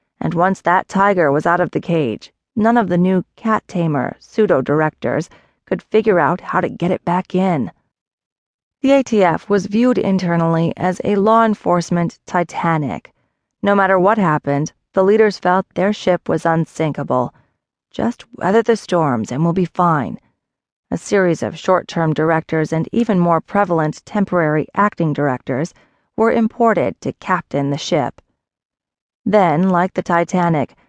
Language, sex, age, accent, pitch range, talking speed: English, female, 30-49, American, 160-200 Hz, 145 wpm